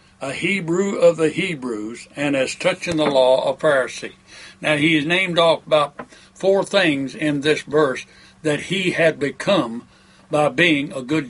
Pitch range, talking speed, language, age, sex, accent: 135-175 Hz, 165 wpm, English, 60-79, male, American